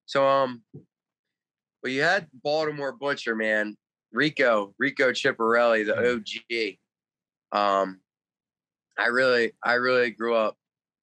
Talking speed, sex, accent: 110 wpm, male, American